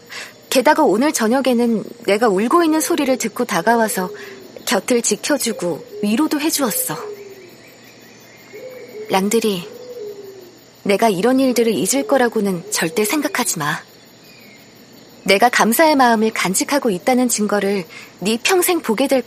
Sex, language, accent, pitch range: female, Korean, native, 210-285 Hz